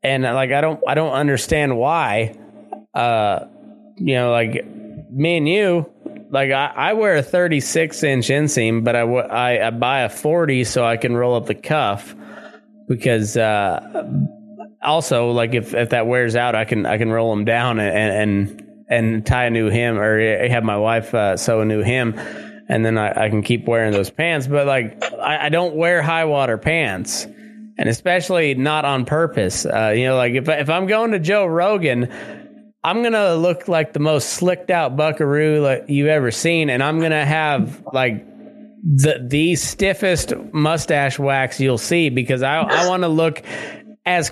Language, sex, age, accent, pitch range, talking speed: English, male, 20-39, American, 115-165 Hz, 185 wpm